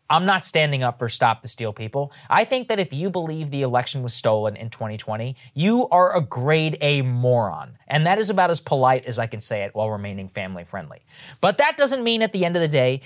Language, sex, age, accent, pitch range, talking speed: English, male, 20-39, American, 120-175 Hz, 240 wpm